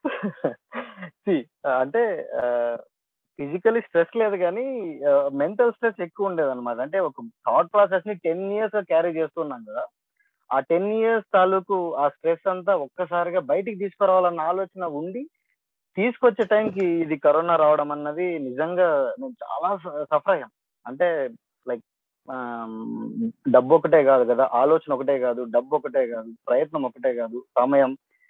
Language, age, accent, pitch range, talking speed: Telugu, 20-39, native, 140-200 Hz, 120 wpm